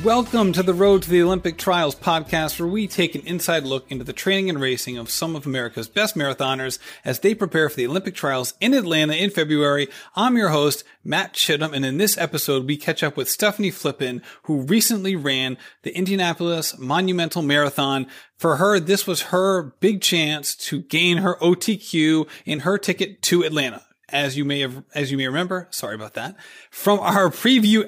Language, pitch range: English, 140-190 Hz